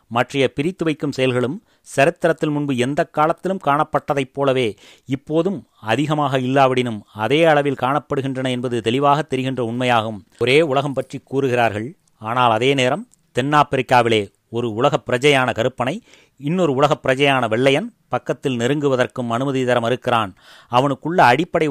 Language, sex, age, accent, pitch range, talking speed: Tamil, male, 30-49, native, 125-145 Hz, 115 wpm